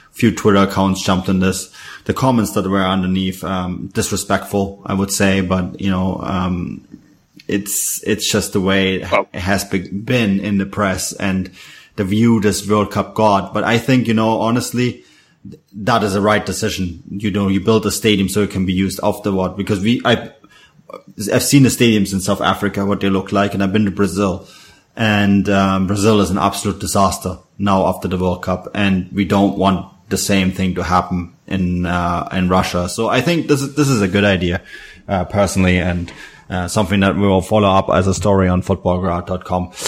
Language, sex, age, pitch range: English, male, 20-39, 95-105 Hz